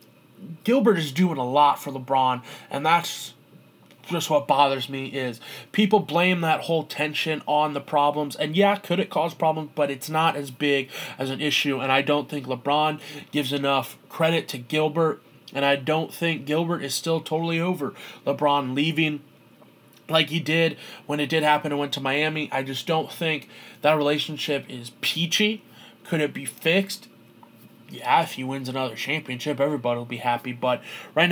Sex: male